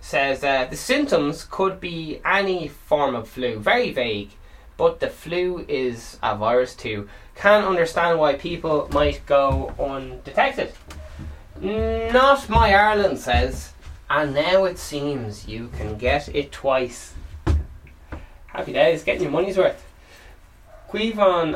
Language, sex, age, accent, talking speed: English, male, 10-29, Irish, 130 wpm